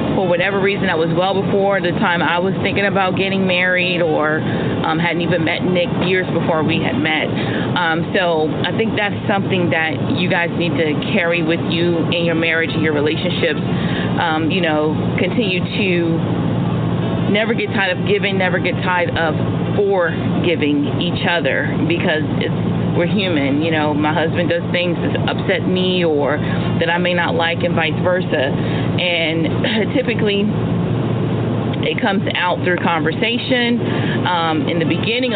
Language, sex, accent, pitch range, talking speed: English, female, American, 160-180 Hz, 165 wpm